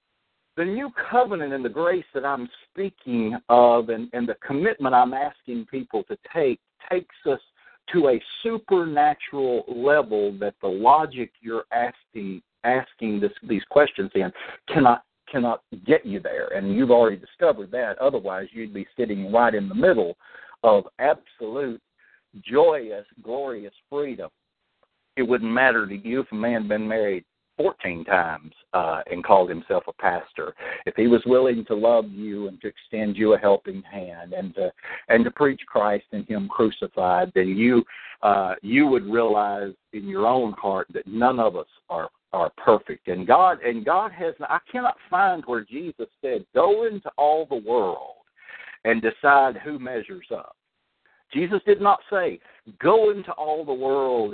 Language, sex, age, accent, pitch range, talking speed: English, male, 60-79, American, 110-175 Hz, 160 wpm